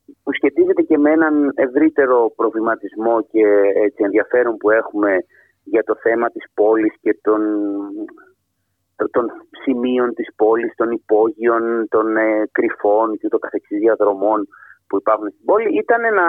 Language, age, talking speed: Greek, 30-49, 135 wpm